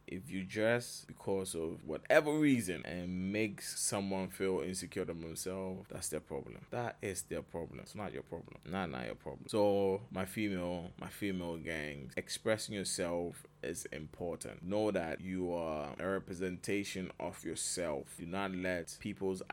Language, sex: English, male